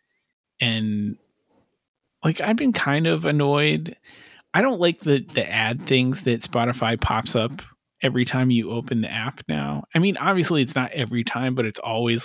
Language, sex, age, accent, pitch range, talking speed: English, male, 30-49, American, 110-135 Hz, 170 wpm